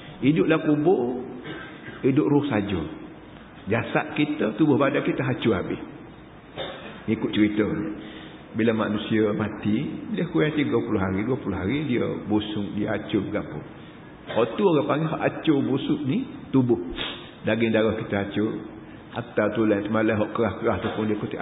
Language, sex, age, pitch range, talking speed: Malay, male, 50-69, 105-135 Hz, 140 wpm